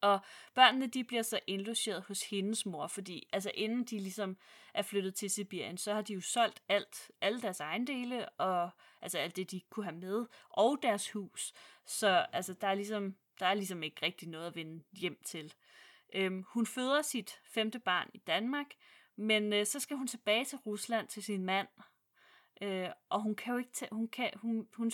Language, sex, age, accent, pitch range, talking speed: Danish, female, 30-49, native, 185-225 Hz, 180 wpm